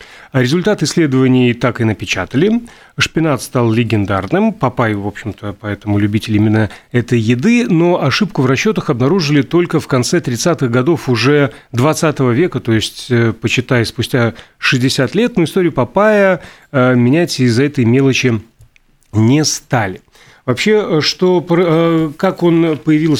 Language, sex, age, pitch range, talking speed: Russian, male, 30-49, 120-160 Hz, 130 wpm